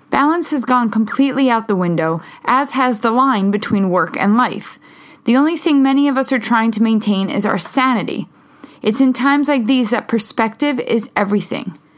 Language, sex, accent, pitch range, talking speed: English, female, American, 205-260 Hz, 185 wpm